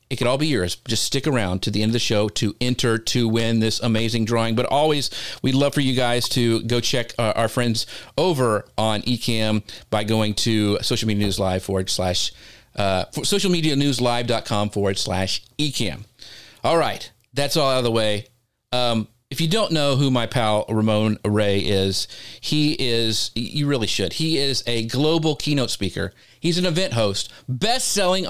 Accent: American